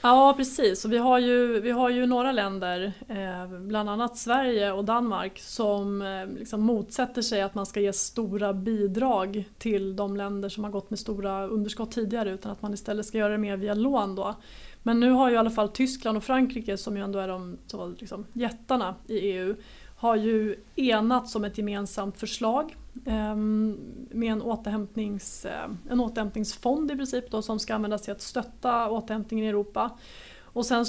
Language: Swedish